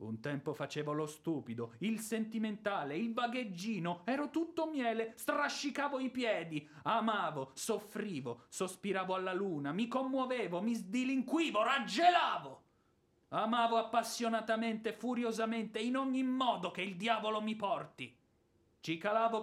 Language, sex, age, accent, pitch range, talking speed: Italian, male, 30-49, native, 170-240 Hz, 115 wpm